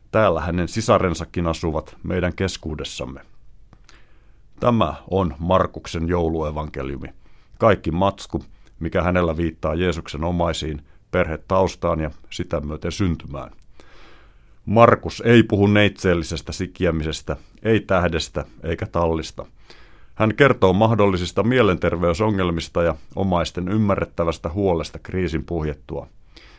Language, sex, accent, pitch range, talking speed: Finnish, male, native, 80-100 Hz, 95 wpm